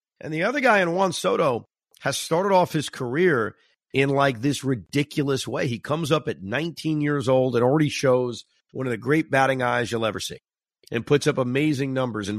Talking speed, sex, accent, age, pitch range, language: 205 wpm, male, American, 50-69, 120-150 Hz, English